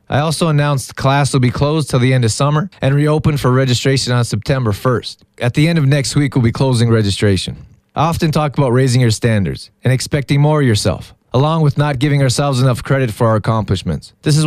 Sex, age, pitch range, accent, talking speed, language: male, 20-39, 120-145 Hz, American, 220 wpm, English